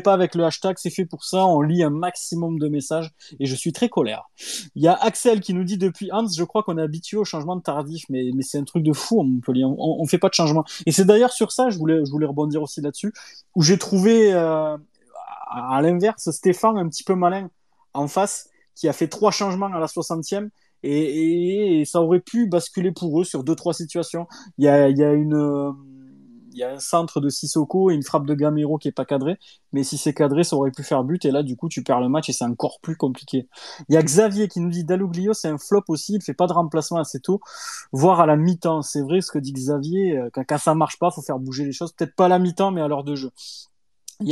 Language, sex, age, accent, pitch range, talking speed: French, male, 20-39, French, 150-190 Hz, 270 wpm